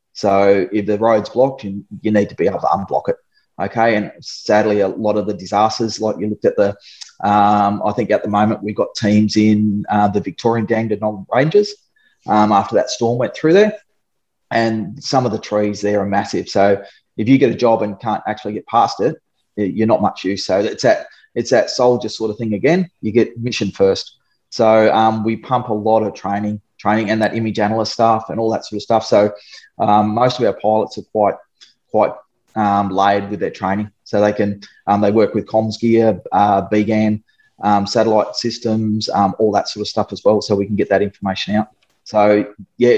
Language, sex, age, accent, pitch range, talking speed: English, male, 20-39, Australian, 105-115 Hz, 210 wpm